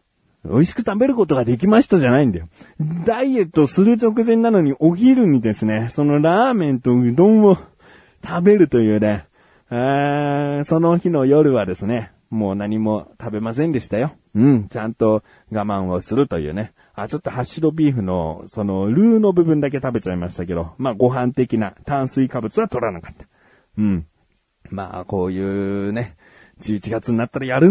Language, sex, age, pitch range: Japanese, male, 30-49, 105-175 Hz